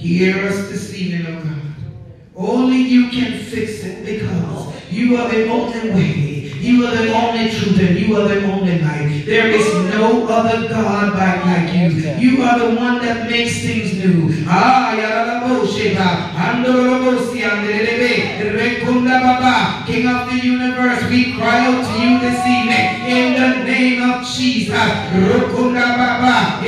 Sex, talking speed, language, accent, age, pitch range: male, 135 wpm, English, American, 40-59, 180-245 Hz